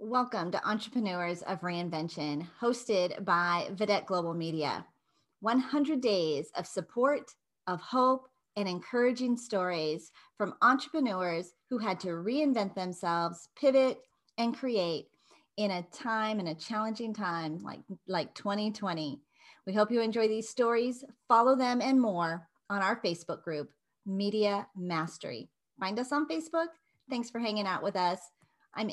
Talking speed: 135 wpm